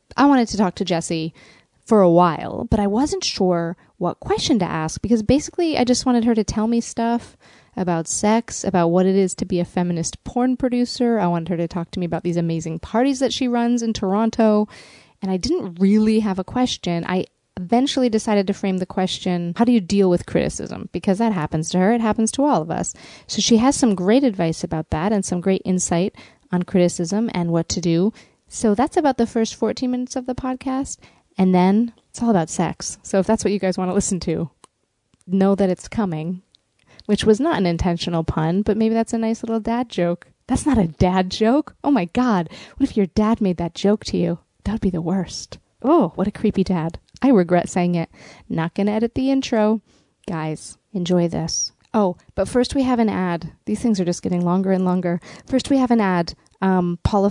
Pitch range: 175-230 Hz